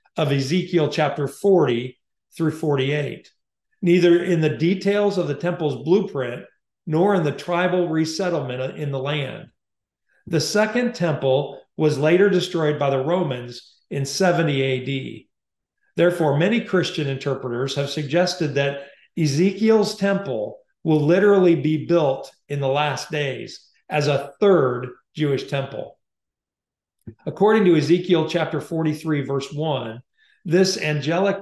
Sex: male